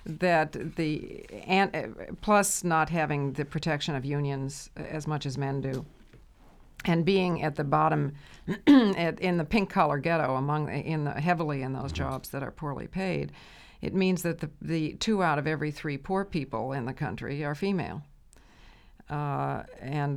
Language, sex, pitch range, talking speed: English, female, 140-165 Hz, 165 wpm